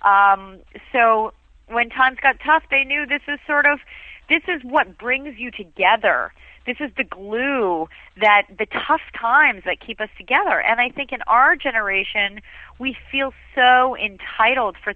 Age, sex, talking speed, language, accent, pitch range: 30-49, female, 165 wpm, English, American, 205-265 Hz